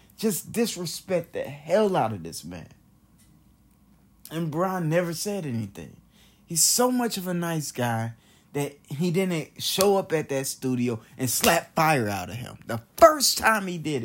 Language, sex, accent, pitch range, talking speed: English, male, American, 125-175 Hz, 165 wpm